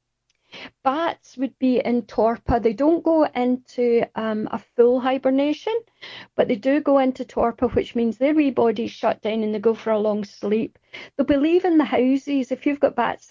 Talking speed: 190 wpm